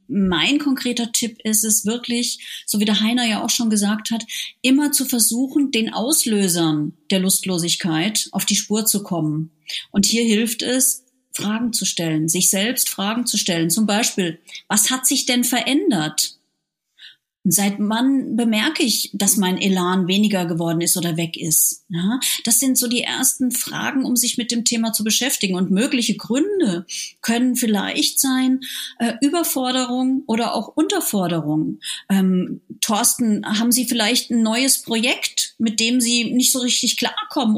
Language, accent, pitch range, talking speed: German, German, 200-255 Hz, 155 wpm